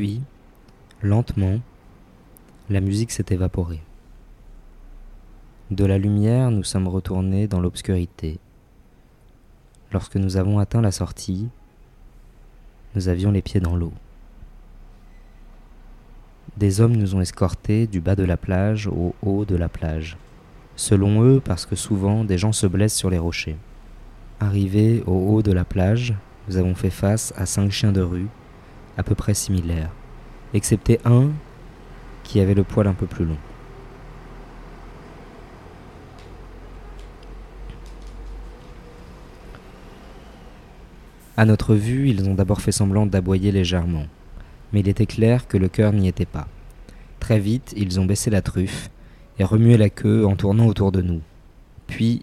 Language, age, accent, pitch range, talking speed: French, 20-39, French, 90-110 Hz, 135 wpm